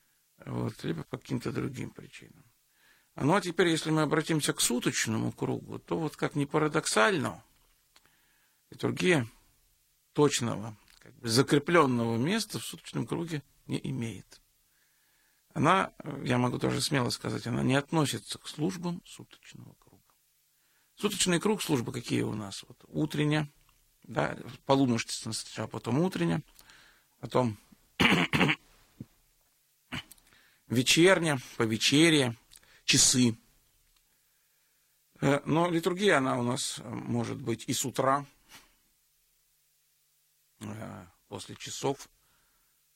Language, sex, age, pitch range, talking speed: Russian, male, 50-69, 115-150 Hz, 105 wpm